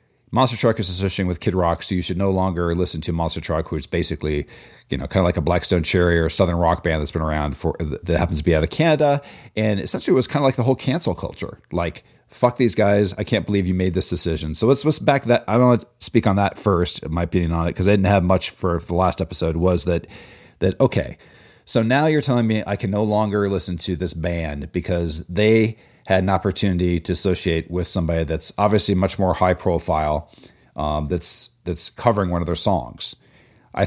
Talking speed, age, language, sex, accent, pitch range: 230 wpm, 40-59, English, male, American, 85-115 Hz